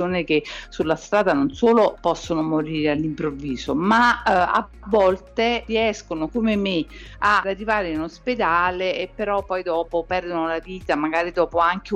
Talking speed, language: 145 wpm, Italian